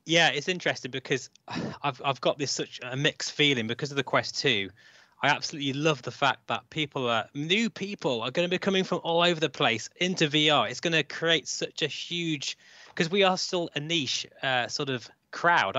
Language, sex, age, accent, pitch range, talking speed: English, male, 20-39, British, 125-165 Hz, 215 wpm